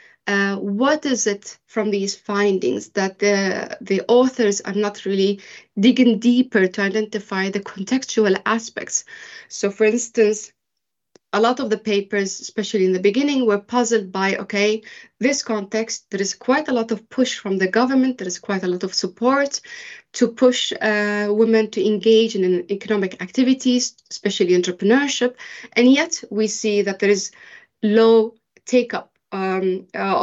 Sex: female